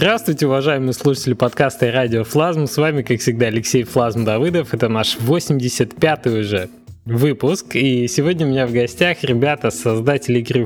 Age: 20-39